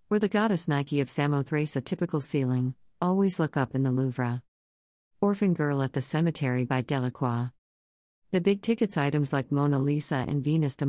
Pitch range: 125-160 Hz